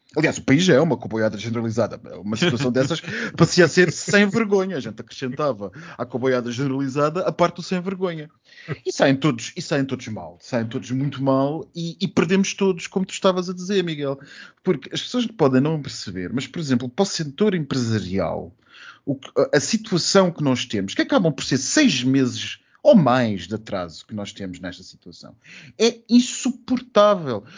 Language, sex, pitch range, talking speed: Portuguese, male, 120-195 Hz, 185 wpm